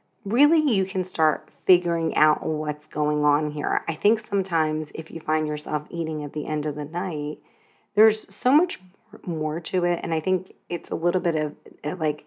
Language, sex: English, female